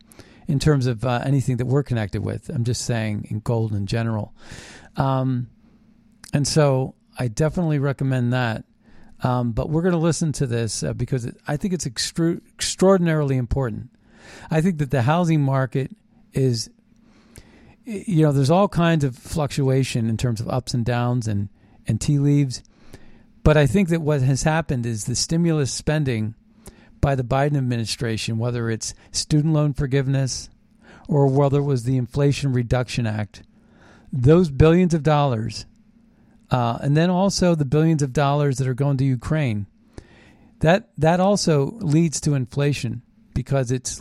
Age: 40-59